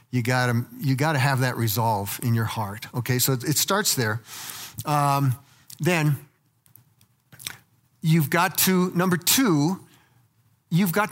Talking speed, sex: 135 wpm, male